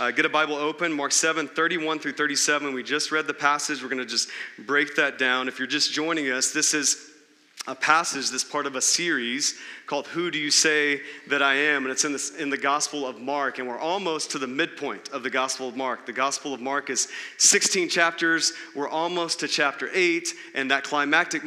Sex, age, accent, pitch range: male, 30-49, American, 145-180 Hz